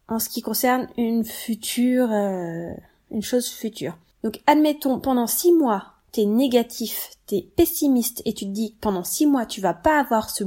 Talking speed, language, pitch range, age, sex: 180 wpm, French, 215-270 Hz, 20-39, female